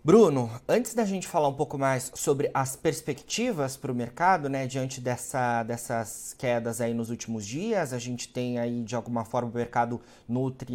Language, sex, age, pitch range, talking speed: Portuguese, male, 30-49, 125-150 Hz, 185 wpm